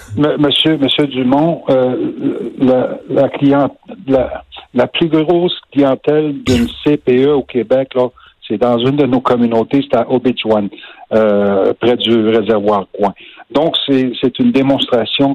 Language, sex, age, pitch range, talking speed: French, male, 50-69, 120-155 Hz, 140 wpm